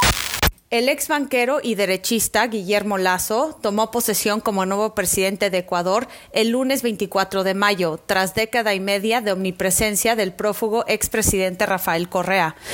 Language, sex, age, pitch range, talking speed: Spanish, female, 30-49, 195-230 Hz, 140 wpm